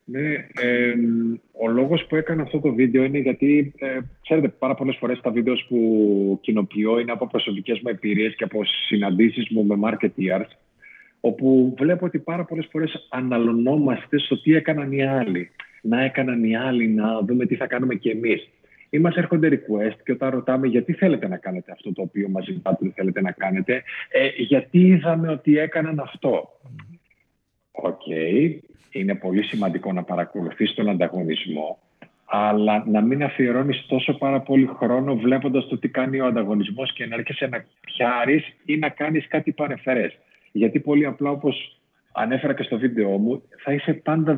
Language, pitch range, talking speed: Greek, 105-145 Hz, 165 wpm